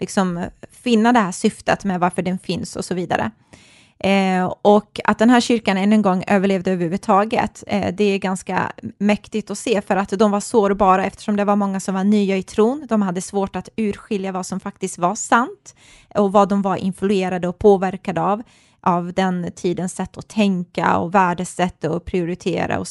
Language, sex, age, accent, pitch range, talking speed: Swedish, female, 20-39, native, 185-220 Hz, 190 wpm